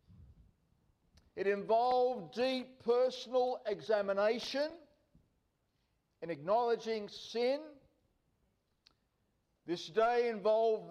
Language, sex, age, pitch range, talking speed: English, male, 50-69, 195-245 Hz, 60 wpm